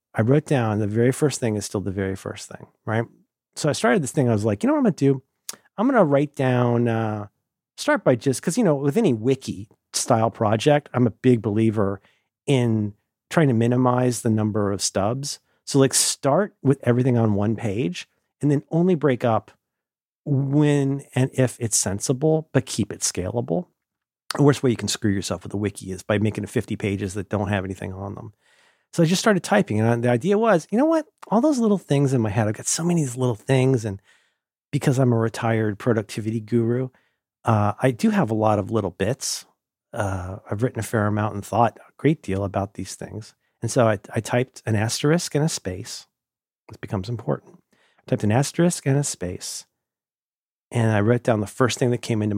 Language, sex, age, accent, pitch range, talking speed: English, male, 40-59, American, 105-140 Hz, 215 wpm